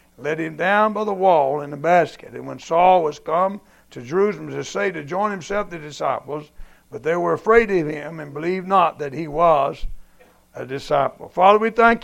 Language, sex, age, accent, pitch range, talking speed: English, male, 60-79, American, 140-175 Hz, 205 wpm